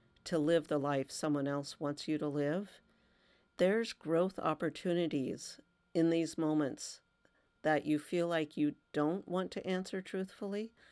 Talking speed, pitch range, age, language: 145 wpm, 145-175 Hz, 50-69, English